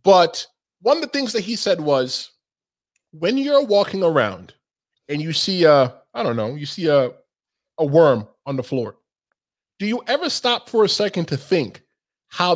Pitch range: 170-255 Hz